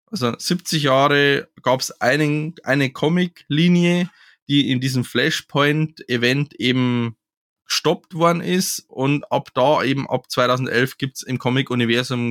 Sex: male